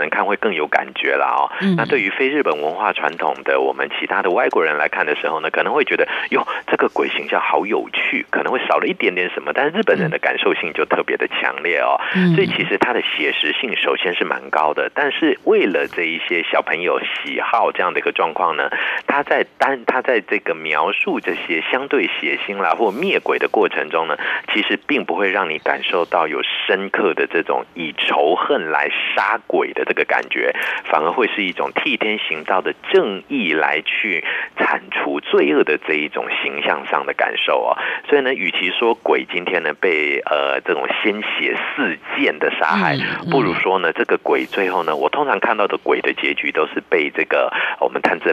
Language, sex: Chinese, male